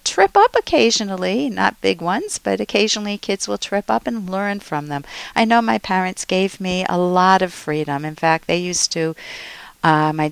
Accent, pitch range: American, 160-205 Hz